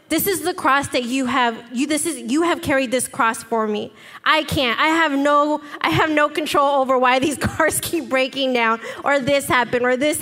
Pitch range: 265-310 Hz